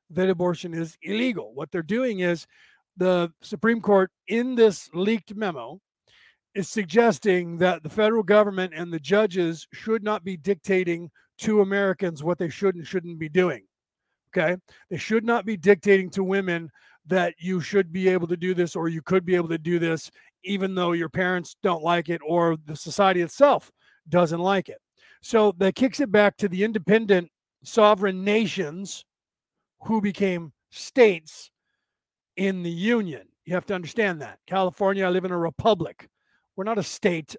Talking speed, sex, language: 170 wpm, male, English